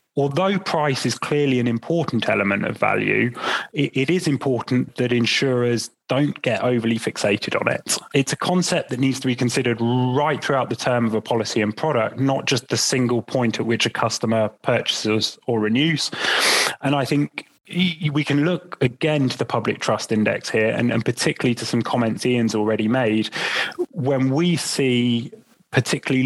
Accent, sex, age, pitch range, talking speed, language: British, male, 20-39, 115-145 Hz, 170 wpm, English